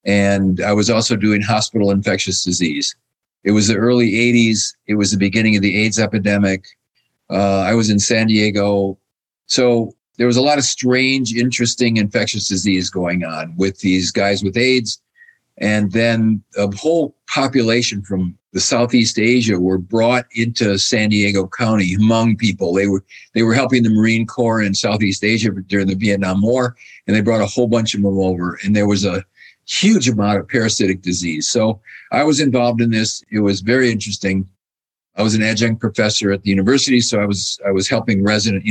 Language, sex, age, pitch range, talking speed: English, male, 50-69, 100-120 Hz, 185 wpm